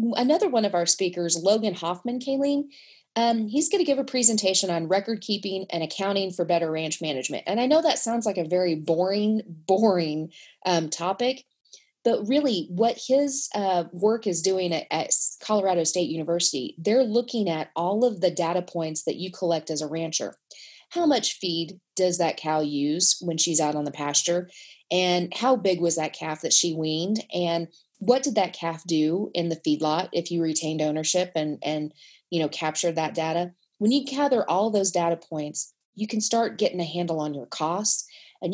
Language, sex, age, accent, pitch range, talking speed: English, female, 30-49, American, 165-230 Hz, 190 wpm